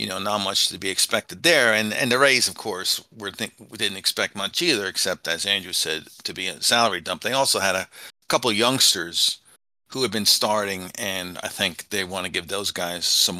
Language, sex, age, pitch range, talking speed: English, male, 50-69, 95-120 Hz, 220 wpm